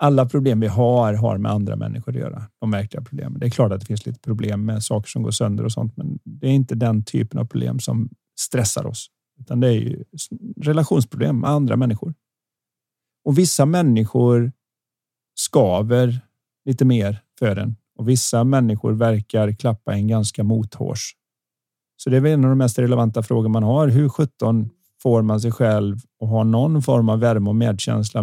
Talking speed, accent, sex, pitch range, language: 190 wpm, native, male, 110-130 Hz, Swedish